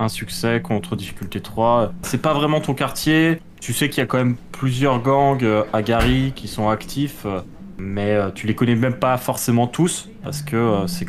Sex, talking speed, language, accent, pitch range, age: male, 190 wpm, French, French, 110-140 Hz, 20-39